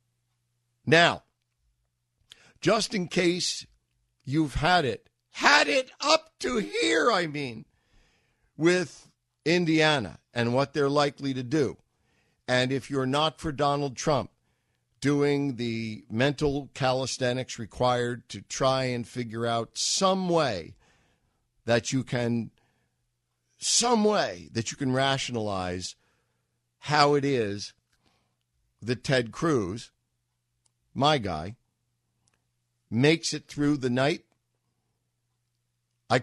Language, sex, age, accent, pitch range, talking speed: English, male, 50-69, American, 115-145 Hz, 105 wpm